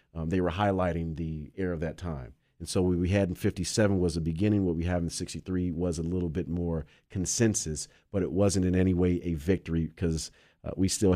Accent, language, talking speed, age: American, English, 225 wpm, 40-59